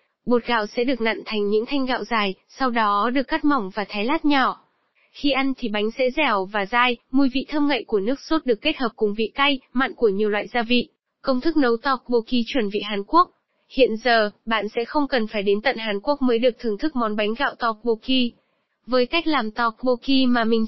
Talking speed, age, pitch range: 230 wpm, 20-39, 220-270 Hz